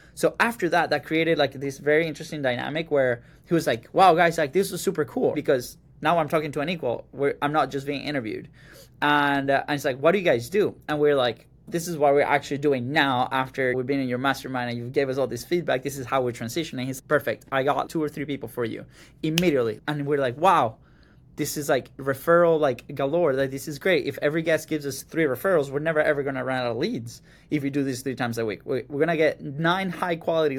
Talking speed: 255 wpm